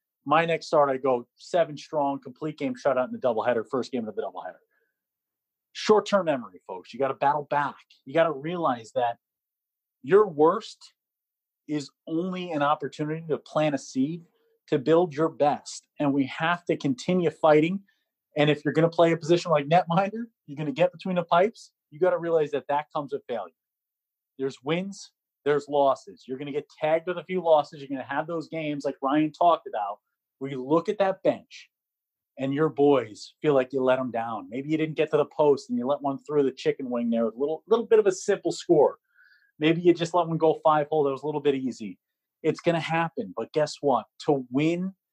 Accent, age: American, 30-49